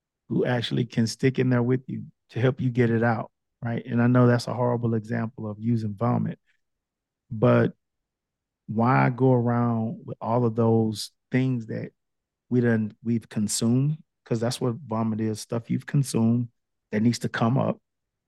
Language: English